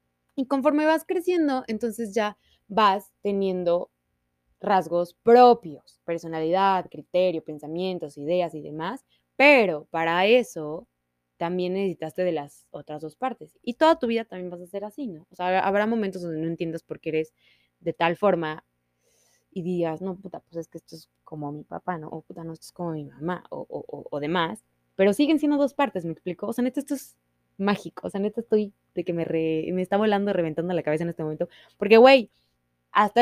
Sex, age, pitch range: female, 20-39, 155-205 Hz